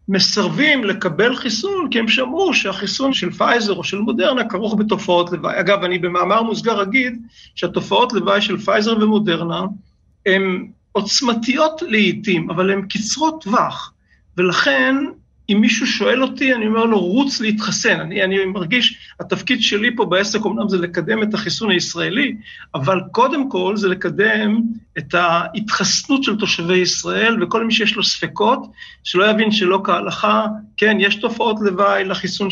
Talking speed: 145 wpm